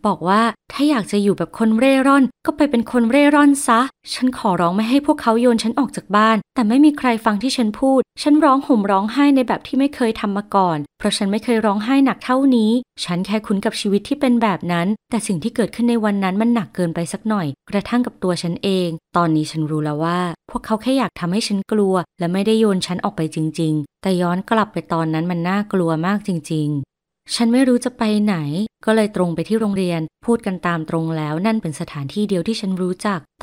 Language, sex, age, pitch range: Thai, female, 20-39, 175-225 Hz